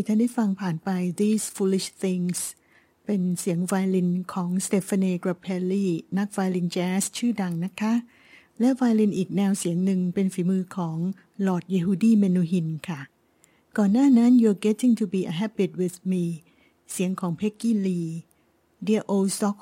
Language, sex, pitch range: Thai, female, 180-210 Hz